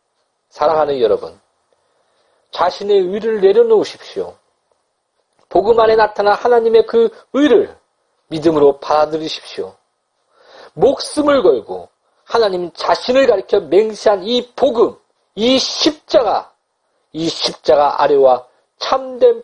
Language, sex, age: Korean, male, 40-59